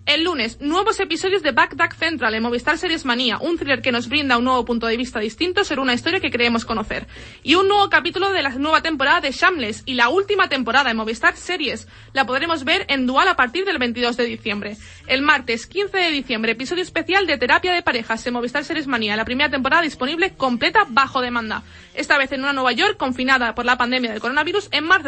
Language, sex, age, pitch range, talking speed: Spanish, female, 20-39, 250-350 Hz, 225 wpm